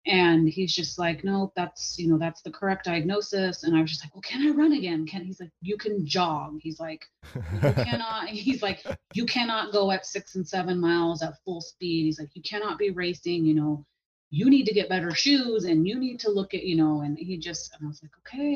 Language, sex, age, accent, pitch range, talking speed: English, female, 30-49, American, 155-195 Hz, 250 wpm